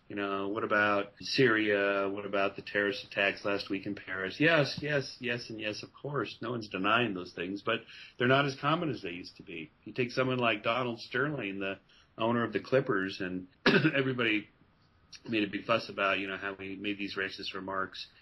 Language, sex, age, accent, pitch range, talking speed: English, male, 40-59, American, 100-130 Hz, 205 wpm